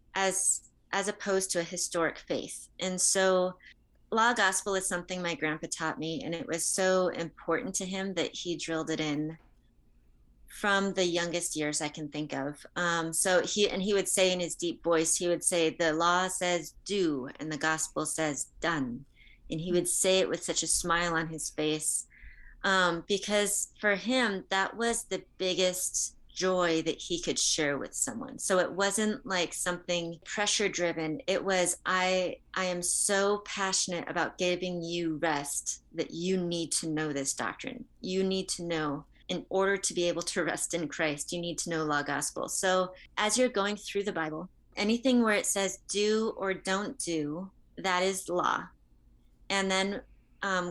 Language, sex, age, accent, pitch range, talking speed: English, female, 30-49, American, 160-190 Hz, 180 wpm